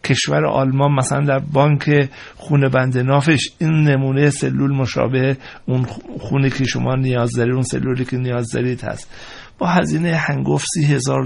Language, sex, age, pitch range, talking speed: Persian, male, 60-79, 130-165 Hz, 155 wpm